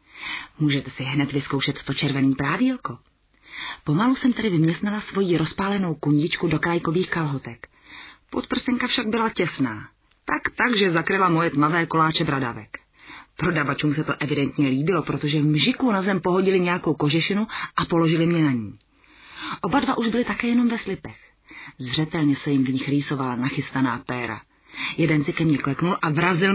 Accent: native